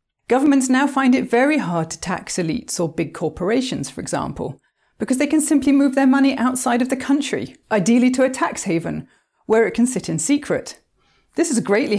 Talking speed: 195 wpm